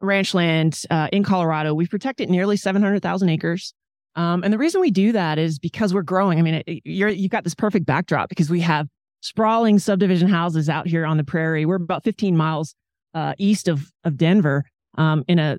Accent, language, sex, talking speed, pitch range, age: American, English, male, 215 wpm, 155-185 Hz, 30-49